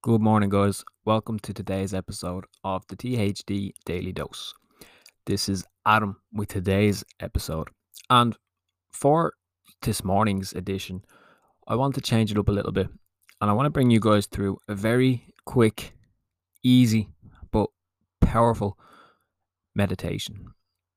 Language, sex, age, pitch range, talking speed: English, male, 20-39, 95-110 Hz, 135 wpm